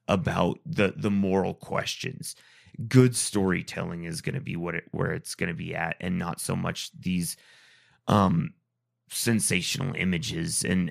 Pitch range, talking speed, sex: 90-115 Hz, 155 wpm, male